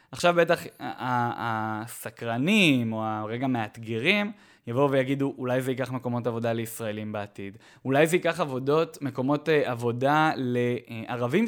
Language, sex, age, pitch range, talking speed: Hebrew, male, 20-39, 115-145 Hz, 115 wpm